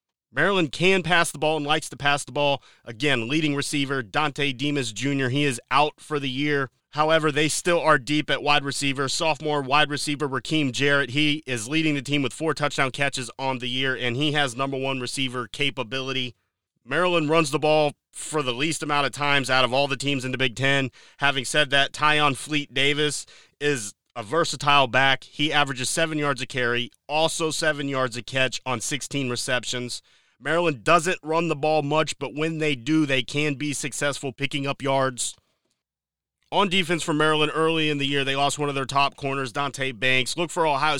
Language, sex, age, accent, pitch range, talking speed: English, male, 30-49, American, 135-155 Hz, 195 wpm